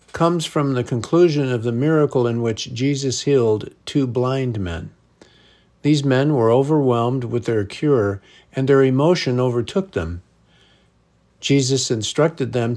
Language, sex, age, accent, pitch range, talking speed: English, male, 50-69, American, 115-145 Hz, 135 wpm